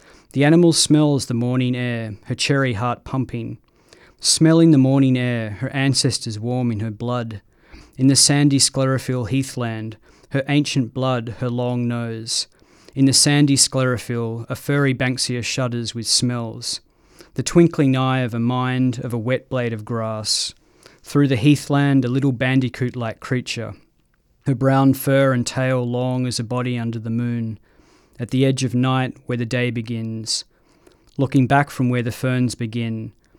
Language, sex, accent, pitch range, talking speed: English, male, Australian, 120-135 Hz, 160 wpm